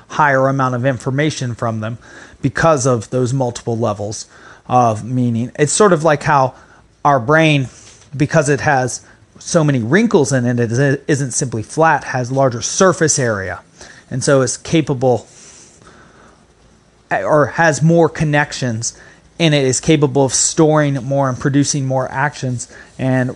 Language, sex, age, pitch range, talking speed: English, male, 30-49, 115-145 Hz, 145 wpm